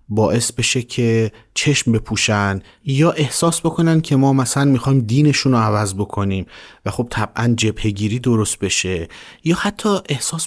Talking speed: 150 wpm